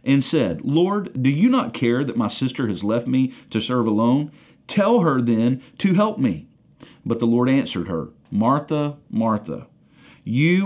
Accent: American